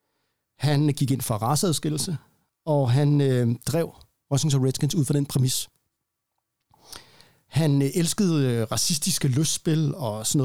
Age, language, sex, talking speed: 60-79, Danish, male, 125 wpm